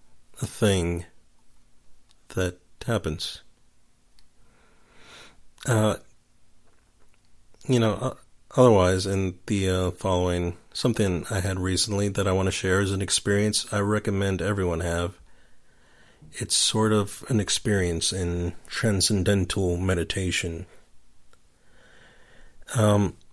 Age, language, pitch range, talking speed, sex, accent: 40-59, English, 90-110 Hz, 95 wpm, male, American